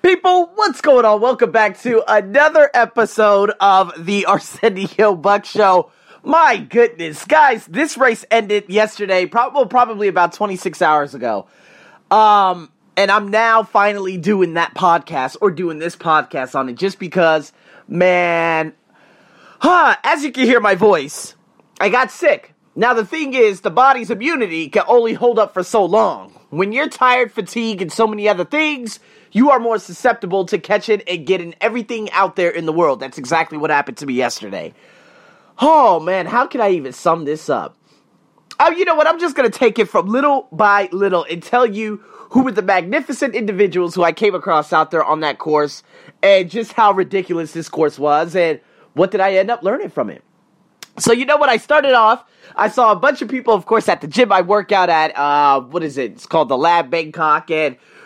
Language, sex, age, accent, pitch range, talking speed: English, male, 30-49, American, 170-235 Hz, 195 wpm